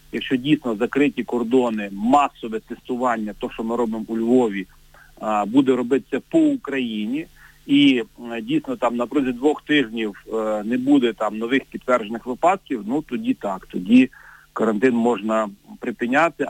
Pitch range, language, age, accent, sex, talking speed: 115-145 Hz, Ukrainian, 40-59, native, male, 130 wpm